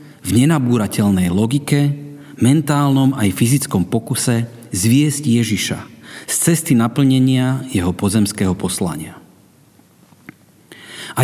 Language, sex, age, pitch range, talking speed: Slovak, male, 40-59, 110-150 Hz, 85 wpm